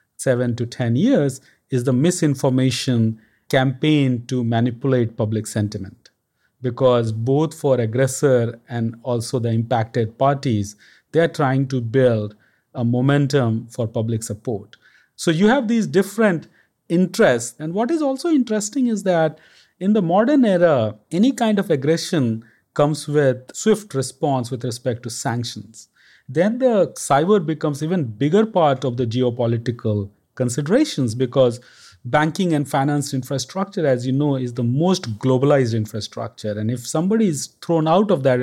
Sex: male